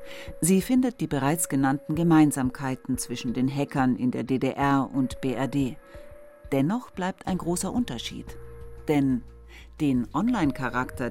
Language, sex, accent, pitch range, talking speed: German, female, German, 130-180 Hz, 120 wpm